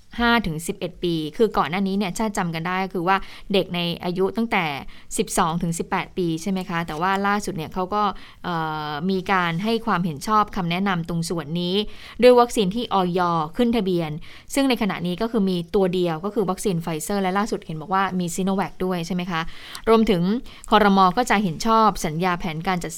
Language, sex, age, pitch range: Thai, female, 20-39, 175-210 Hz